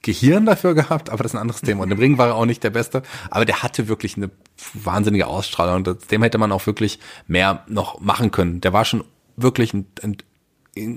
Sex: male